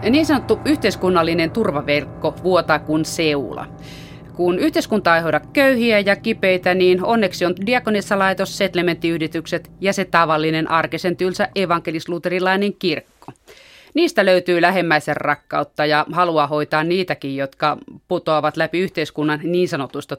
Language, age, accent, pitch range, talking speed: Finnish, 30-49, native, 150-185 Hz, 120 wpm